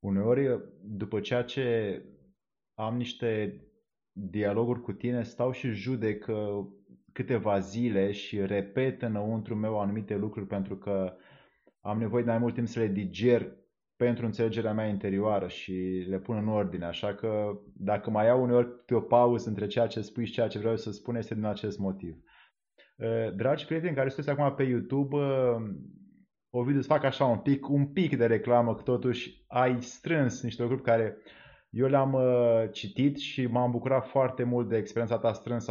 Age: 20-39